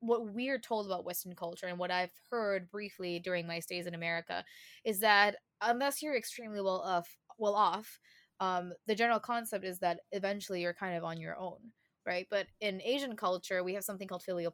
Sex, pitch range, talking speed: female, 175-205 Hz, 200 wpm